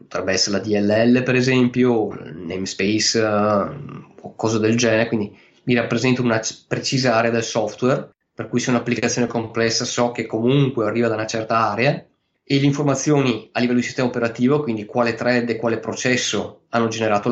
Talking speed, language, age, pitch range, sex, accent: 175 wpm, Italian, 20-39, 110-130 Hz, male, native